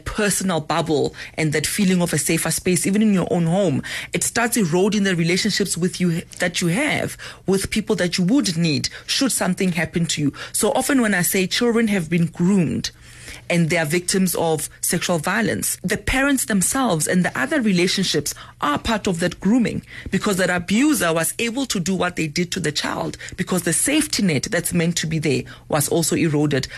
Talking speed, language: 195 wpm, English